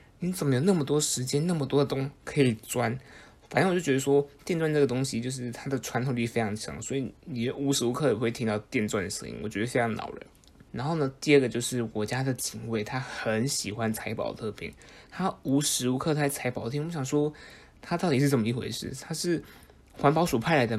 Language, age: Chinese, 20-39